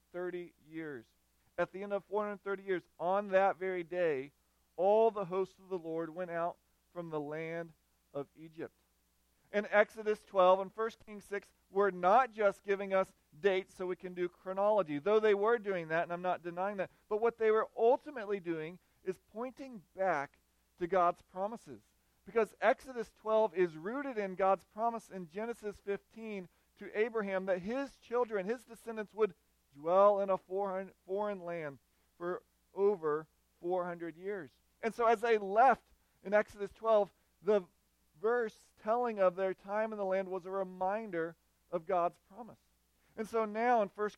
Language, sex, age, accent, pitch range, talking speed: English, male, 40-59, American, 175-210 Hz, 165 wpm